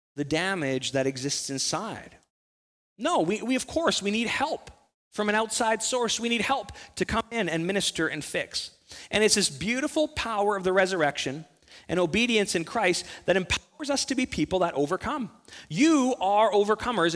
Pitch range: 160-230 Hz